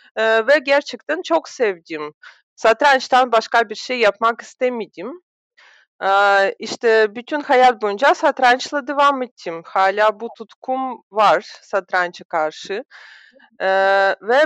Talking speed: 110 wpm